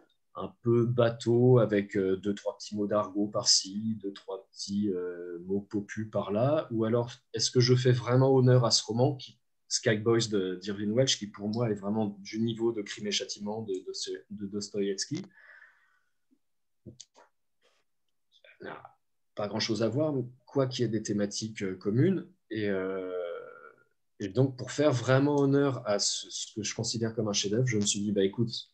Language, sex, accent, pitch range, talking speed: French, male, French, 100-125 Hz, 185 wpm